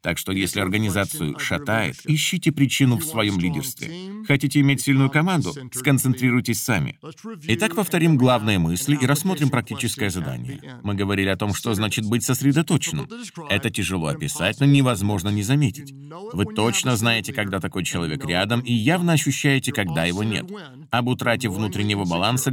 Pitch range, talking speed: 105-145 Hz, 150 wpm